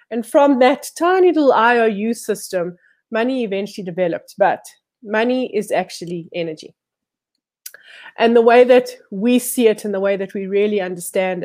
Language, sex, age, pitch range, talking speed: English, female, 30-49, 195-240 Hz, 150 wpm